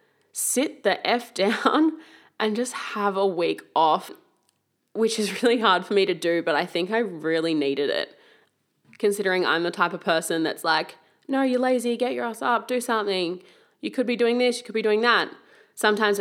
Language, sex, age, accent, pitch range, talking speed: English, female, 20-39, Australian, 180-230 Hz, 195 wpm